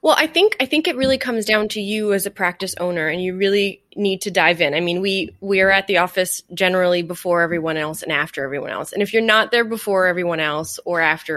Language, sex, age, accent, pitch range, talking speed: English, female, 20-39, American, 160-200 Hz, 255 wpm